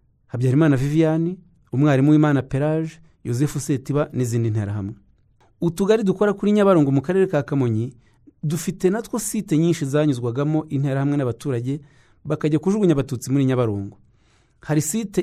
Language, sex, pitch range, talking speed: English, male, 120-155 Hz, 155 wpm